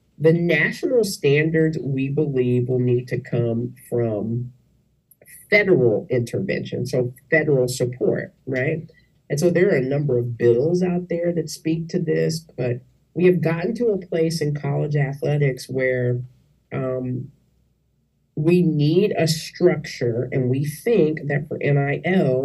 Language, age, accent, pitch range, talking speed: English, 50-69, American, 130-165 Hz, 140 wpm